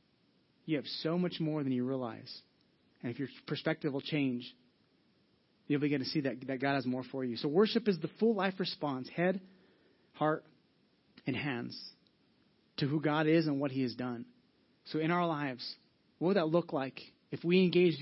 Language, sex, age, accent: English, male, 30-49, American